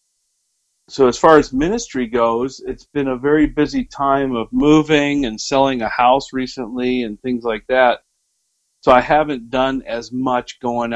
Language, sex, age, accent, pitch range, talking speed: English, male, 50-69, American, 115-135 Hz, 165 wpm